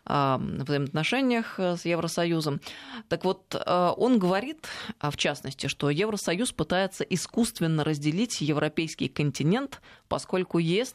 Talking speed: 100 wpm